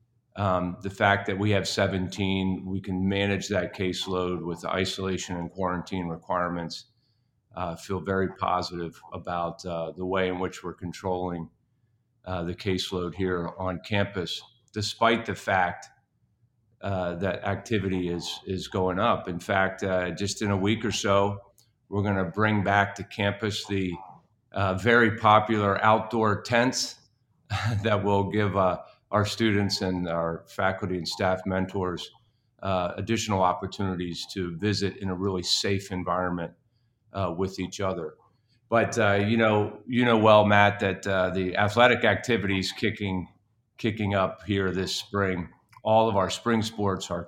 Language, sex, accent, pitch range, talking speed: English, male, American, 95-110 Hz, 150 wpm